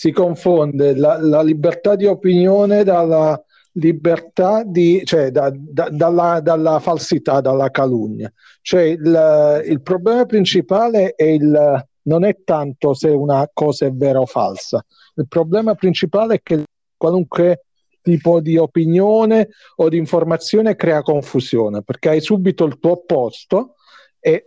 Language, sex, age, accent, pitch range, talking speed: Italian, male, 50-69, native, 140-175 Hz, 135 wpm